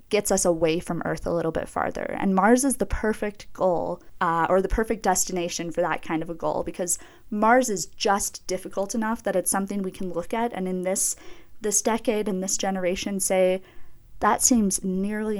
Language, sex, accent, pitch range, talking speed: English, female, American, 180-215 Hz, 200 wpm